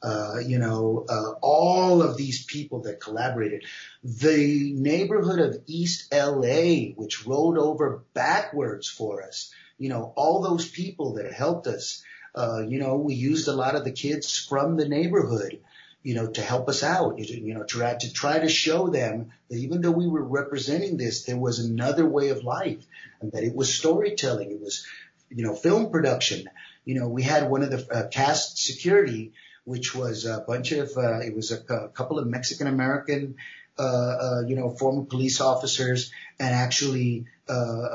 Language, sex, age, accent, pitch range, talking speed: English, male, 40-59, American, 120-150 Hz, 180 wpm